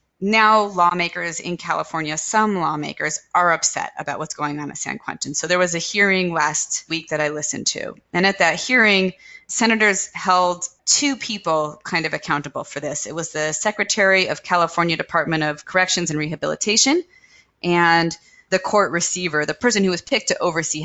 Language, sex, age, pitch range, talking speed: English, female, 20-39, 155-205 Hz, 175 wpm